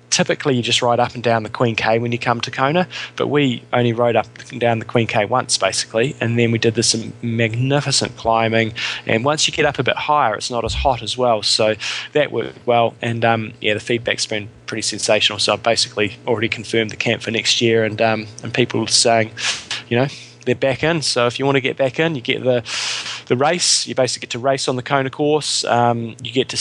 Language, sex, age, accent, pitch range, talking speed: English, male, 20-39, Australian, 115-130 Hz, 240 wpm